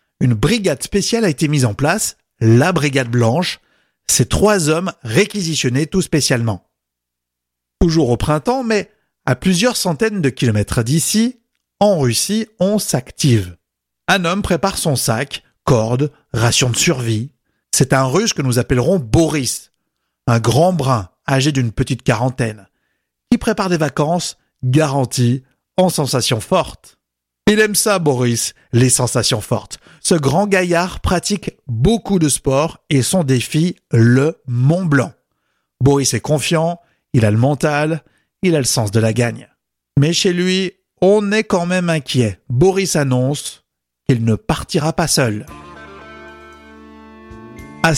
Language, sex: French, male